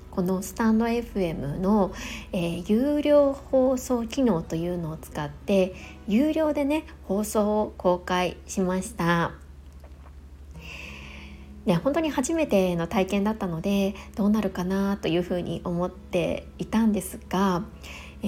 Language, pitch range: Japanese, 170-240 Hz